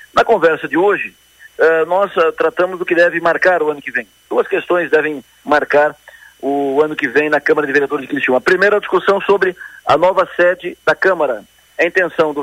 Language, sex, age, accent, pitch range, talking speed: Portuguese, male, 50-69, Brazilian, 150-185 Hz, 205 wpm